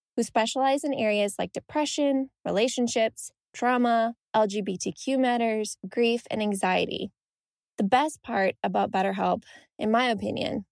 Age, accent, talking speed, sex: 10-29, American, 120 wpm, female